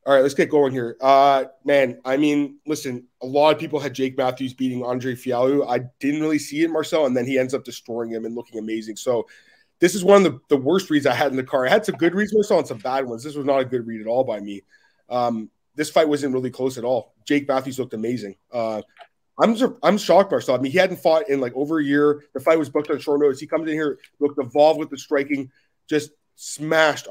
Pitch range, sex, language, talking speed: 125-155 Hz, male, English, 255 wpm